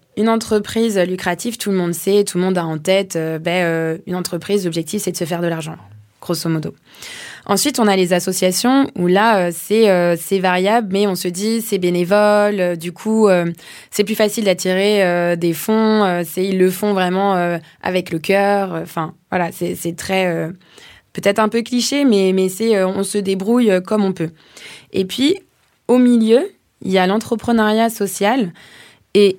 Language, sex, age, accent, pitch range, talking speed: French, female, 20-39, French, 175-215 Hz, 200 wpm